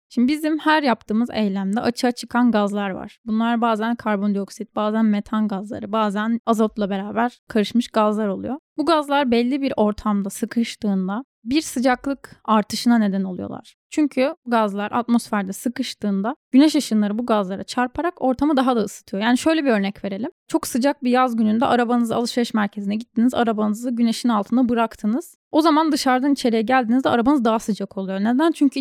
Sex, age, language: female, 10-29, Turkish